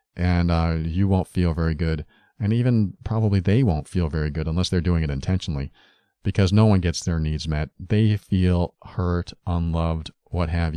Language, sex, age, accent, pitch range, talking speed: English, male, 40-59, American, 85-100 Hz, 185 wpm